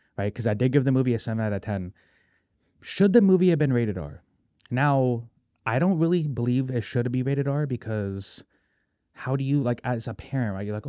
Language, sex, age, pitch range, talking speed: English, male, 30-49, 105-130 Hz, 210 wpm